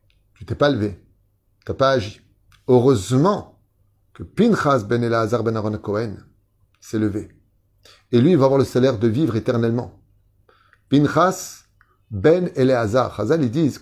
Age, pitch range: 30-49, 100-135 Hz